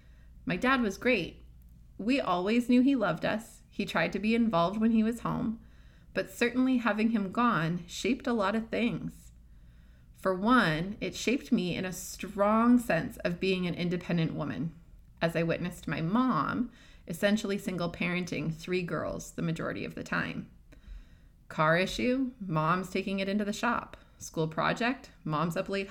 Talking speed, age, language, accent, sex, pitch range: 165 wpm, 30-49, English, American, female, 165-230 Hz